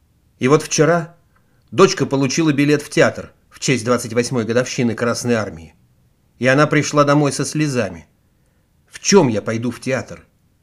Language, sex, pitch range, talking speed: Russian, male, 120-155 Hz, 145 wpm